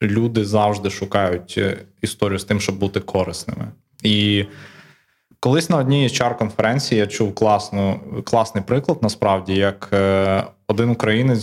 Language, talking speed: Ukrainian, 125 wpm